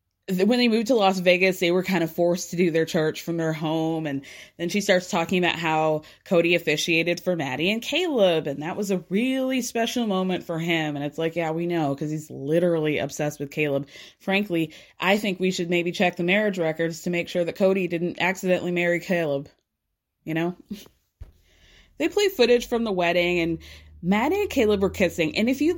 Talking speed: 205 wpm